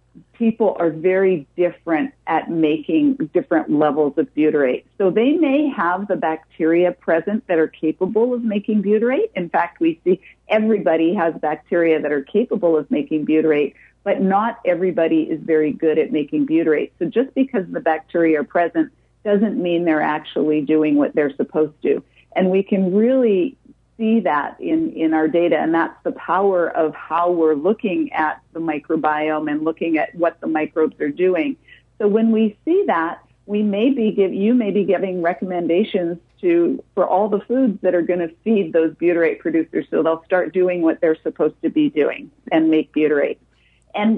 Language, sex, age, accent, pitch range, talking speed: English, female, 50-69, American, 160-220 Hz, 175 wpm